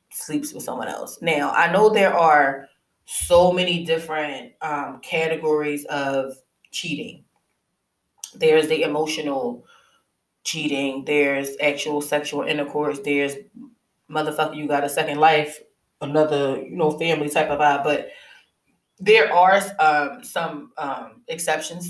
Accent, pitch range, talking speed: American, 150-200 Hz, 125 wpm